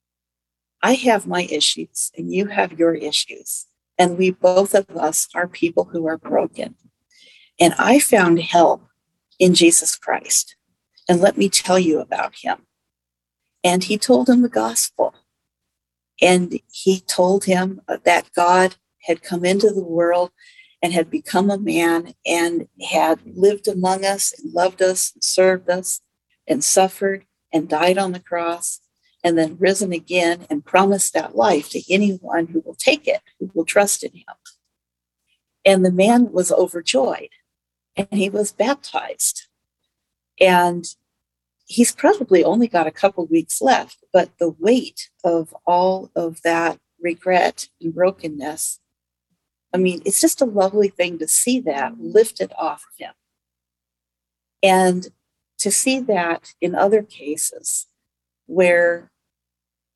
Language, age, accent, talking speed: English, 50-69, American, 145 wpm